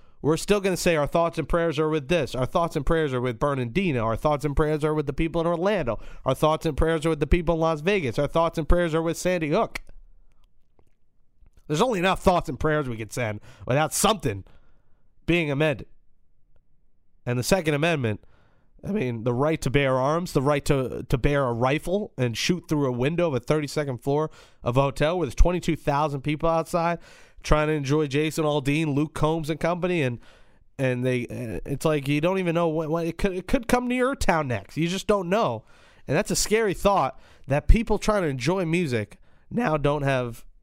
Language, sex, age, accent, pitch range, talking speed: English, male, 30-49, American, 125-165 Hz, 210 wpm